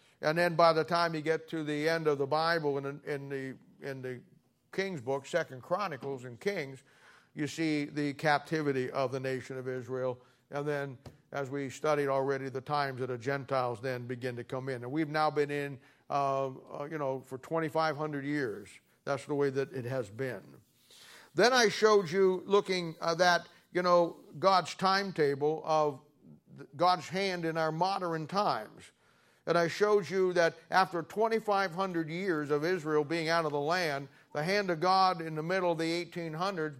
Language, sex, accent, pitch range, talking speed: English, male, American, 140-175 Hz, 185 wpm